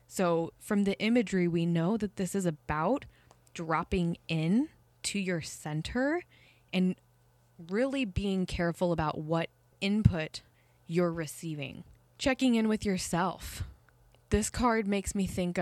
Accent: American